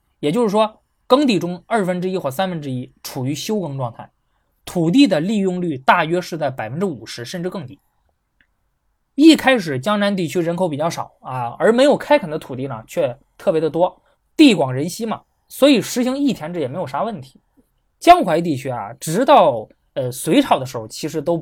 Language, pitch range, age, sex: Chinese, 140-220 Hz, 20-39, male